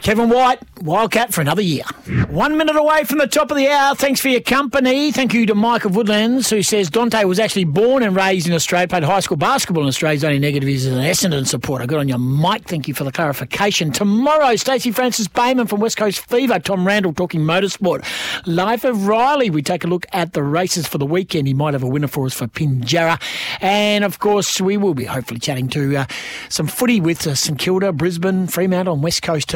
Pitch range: 160-235 Hz